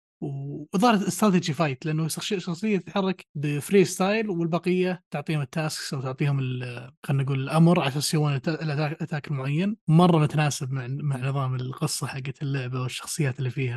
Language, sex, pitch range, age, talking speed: Arabic, male, 140-175 Hz, 20-39, 130 wpm